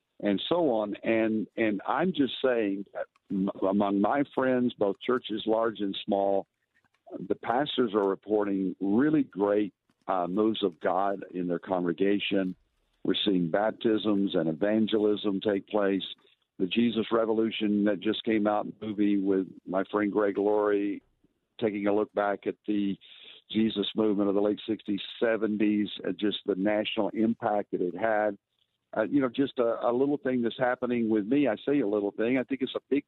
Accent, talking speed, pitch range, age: American, 170 wpm, 100-115 Hz, 60-79